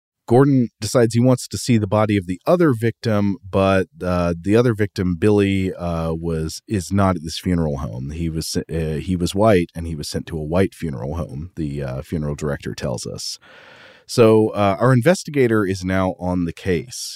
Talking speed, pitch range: 195 wpm, 85-110 Hz